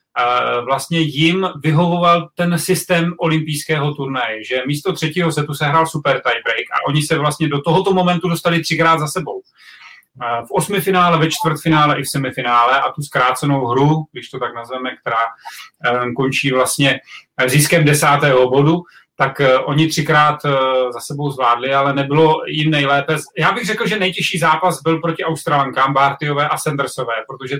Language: Czech